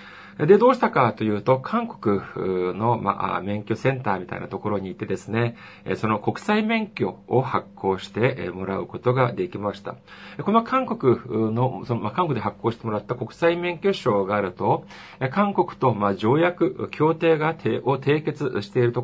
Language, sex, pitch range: Japanese, male, 105-170 Hz